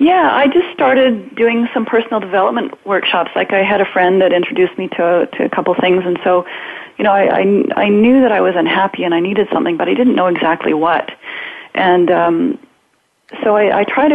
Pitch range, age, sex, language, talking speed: 180-255 Hz, 30-49, female, English, 215 wpm